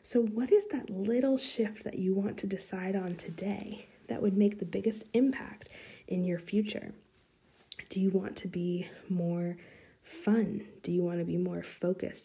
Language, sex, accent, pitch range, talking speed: English, female, American, 180-210 Hz, 175 wpm